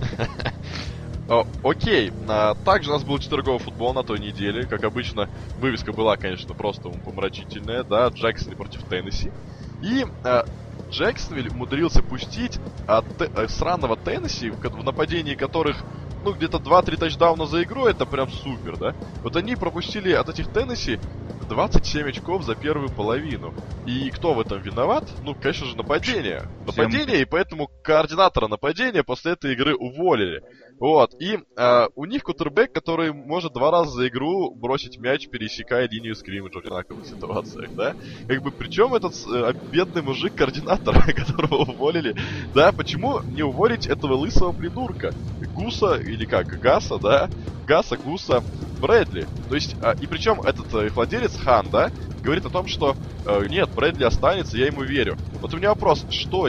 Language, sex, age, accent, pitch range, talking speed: Russian, male, 20-39, native, 110-155 Hz, 155 wpm